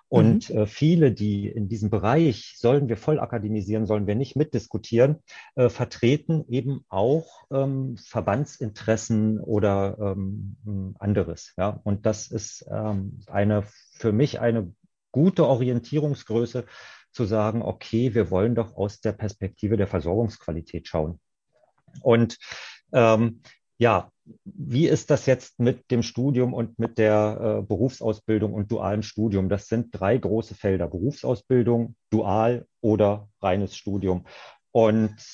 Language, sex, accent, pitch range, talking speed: German, male, German, 105-125 Hz, 125 wpm